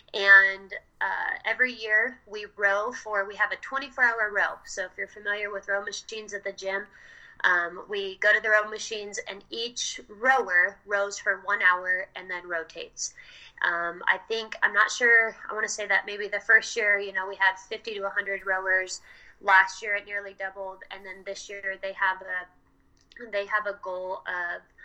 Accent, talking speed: American, 190 wpm